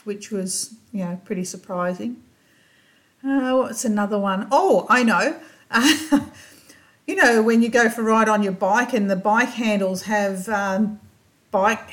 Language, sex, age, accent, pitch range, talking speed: English, female, 50-69, Australian, 190-235 Hz, 160 wpm